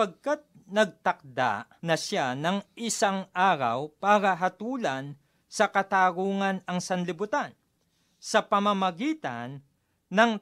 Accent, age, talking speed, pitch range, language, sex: native, 40-59, 90 wpm, 160-210 Hz, Filipino, male